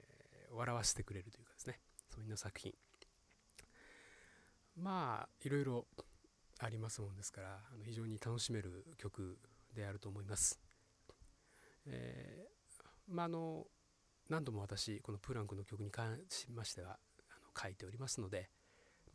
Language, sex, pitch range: Japanese, male, 100-125 Hz